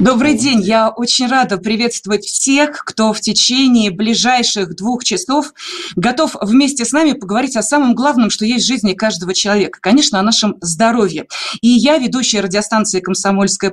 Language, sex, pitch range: Russian, female, 205-255 Hz